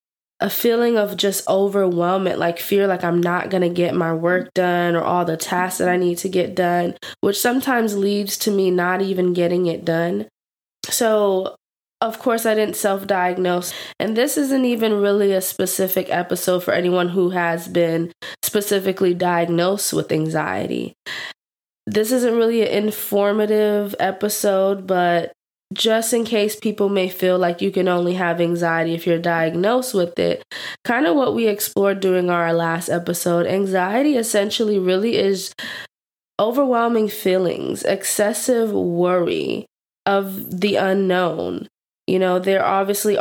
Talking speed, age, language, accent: 150 wpm, 20-39, English, American